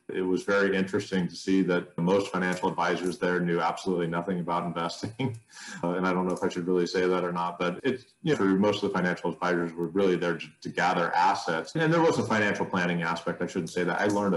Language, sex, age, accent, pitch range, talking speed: English, male, 30-49, American, 90-105 Hz, 250 wpm